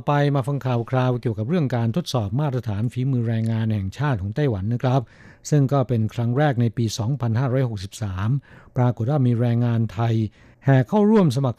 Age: 60-79